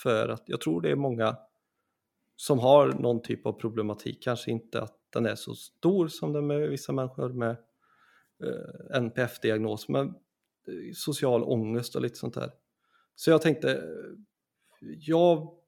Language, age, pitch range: Swedish, 30-49, 115-150 Hz